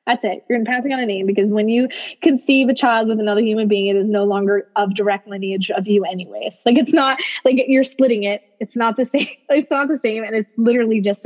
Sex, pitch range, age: female, 200-245 Hz, 20-39